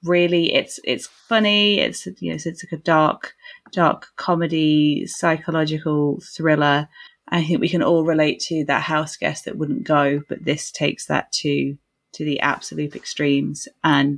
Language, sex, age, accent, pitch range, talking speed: English, female, 20-39, British, 145-165 Hz, 165 wpm